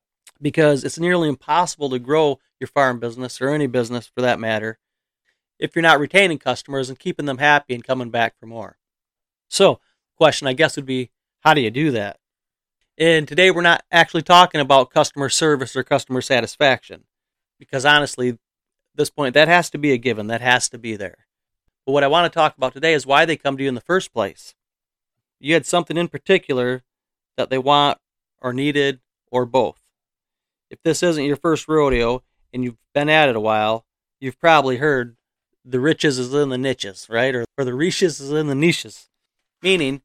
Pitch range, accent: 125-155 Hz, American